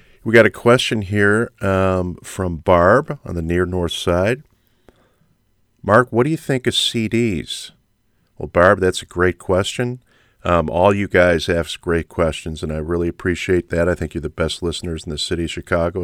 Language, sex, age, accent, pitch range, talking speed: English, male, 40-59, American, 85-115 Hz, 185 wpm